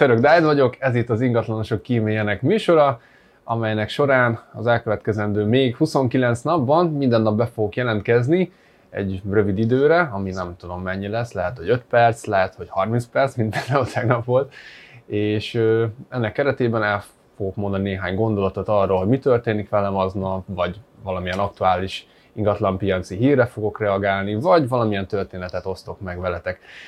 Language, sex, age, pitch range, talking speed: Hungarian, male, 20-39, 95-120 Hz, 150 wpm